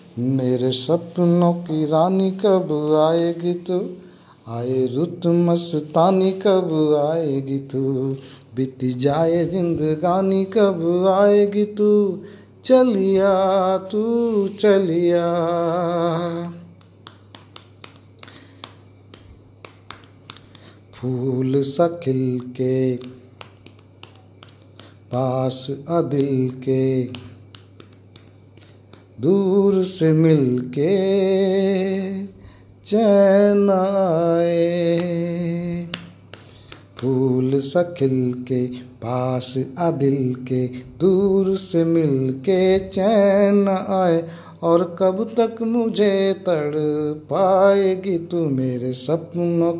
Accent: native